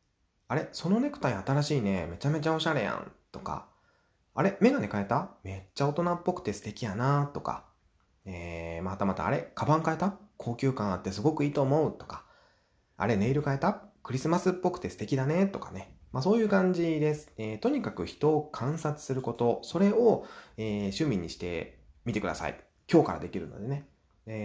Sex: male